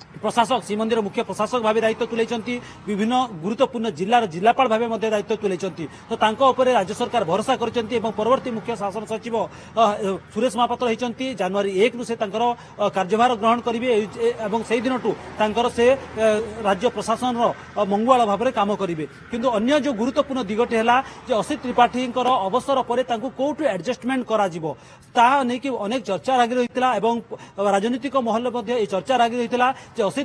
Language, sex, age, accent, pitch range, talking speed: English, male, 40-59, Indian, 215-255 Hz, 85 wpm